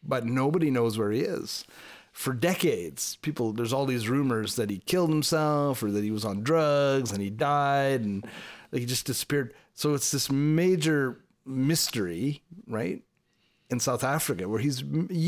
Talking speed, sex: 170 wpm, male